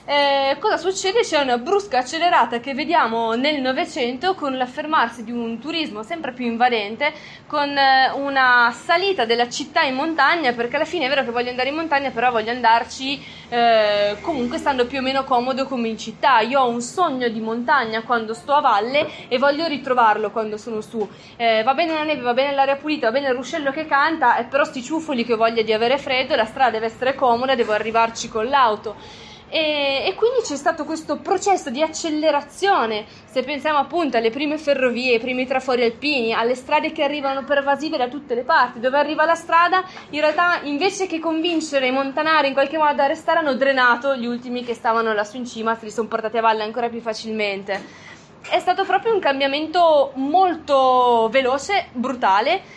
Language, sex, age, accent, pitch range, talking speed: Italian, female, 20-39, native, 235-300 Hz, 190 wpm